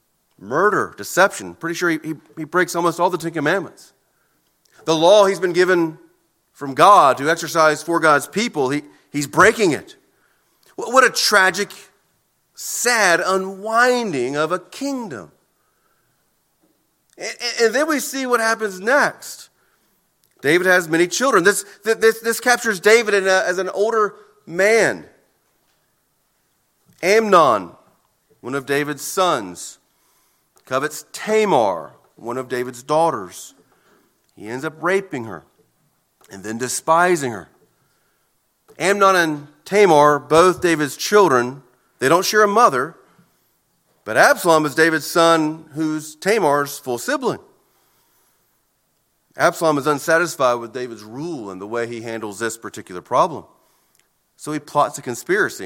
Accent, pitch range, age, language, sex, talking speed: American, 145-195 Hz, 40-59, English, male, 130 wpm